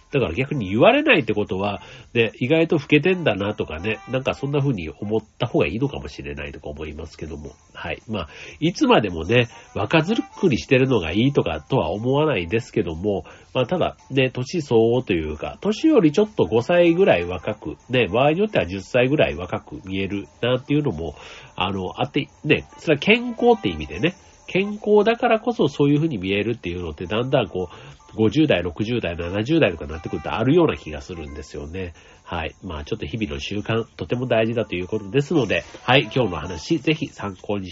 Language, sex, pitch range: Japanese, male, 90-140 Hz